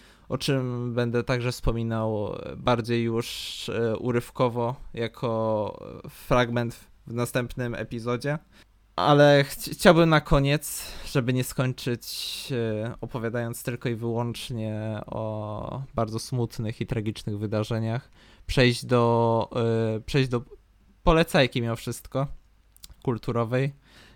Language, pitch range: Polish, 115-135 Hz